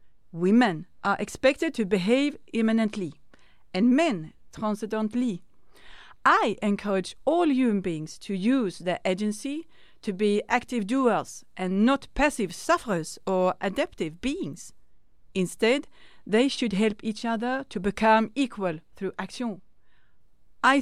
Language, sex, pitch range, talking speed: Swedish, female, 185-240 Hz, 120 wpm